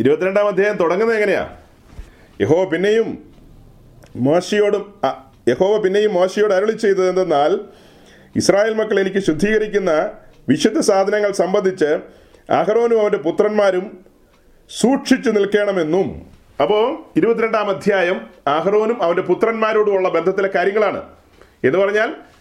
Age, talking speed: 40-59, 95 wpm